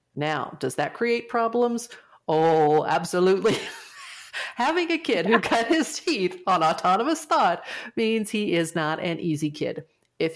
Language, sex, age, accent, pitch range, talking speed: English, female, 40-59, American, 155-220 Hz, 145 wpm